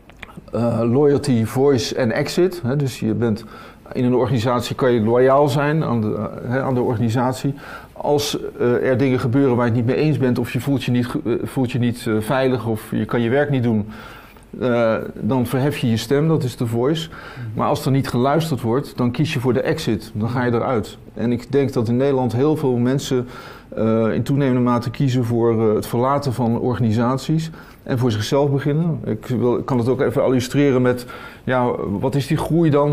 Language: Dutch